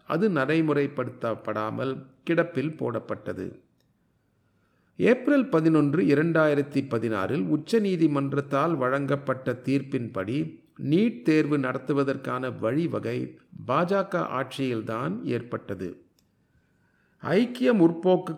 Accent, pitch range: native, 125-165 Hz